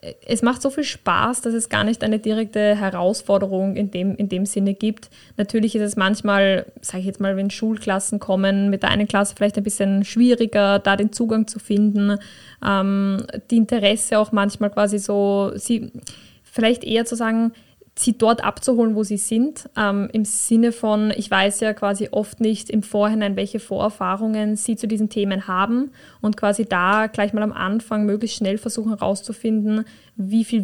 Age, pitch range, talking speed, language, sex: 10-29, 195-220 Hz, 180 wpm, German, female